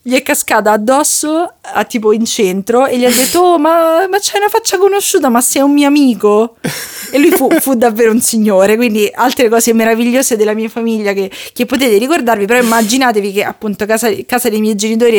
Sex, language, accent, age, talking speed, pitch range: female, Italian, native, 30-49, 200 wpm, 205-245 Hz